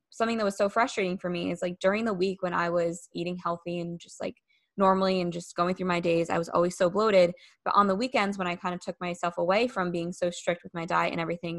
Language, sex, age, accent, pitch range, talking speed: English, female, 20-39, American, 170-190 Hz, 270 wpm